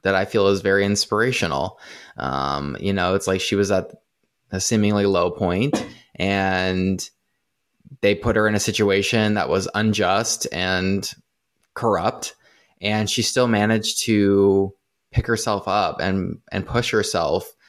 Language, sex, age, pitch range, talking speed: English, male, 20-39, 95-115 Hz, 145 wpm